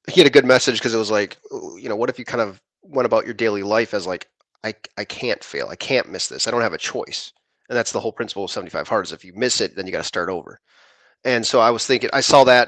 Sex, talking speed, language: male, 295 wpm, English